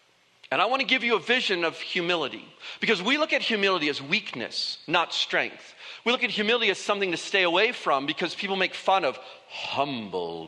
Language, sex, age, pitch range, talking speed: English, male, 40-59, 160-230 Hz, 195 wpm